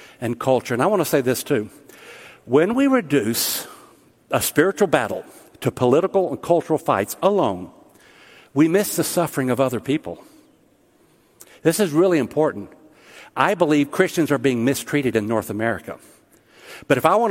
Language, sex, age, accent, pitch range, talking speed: English, male, 60-79, American, 120-170 Hz, 155 wpm